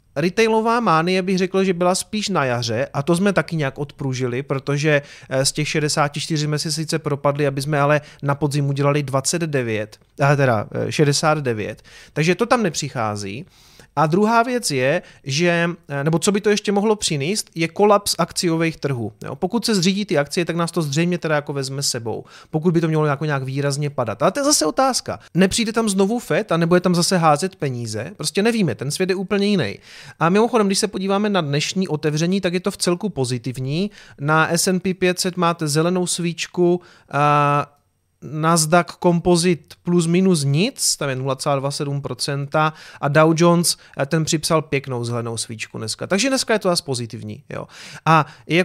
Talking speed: 175 wpm